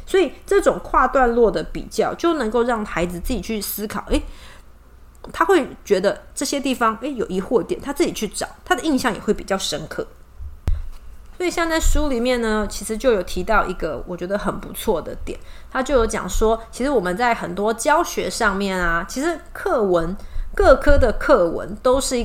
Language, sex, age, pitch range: Chinese, female, 30-49, 195-270 Hz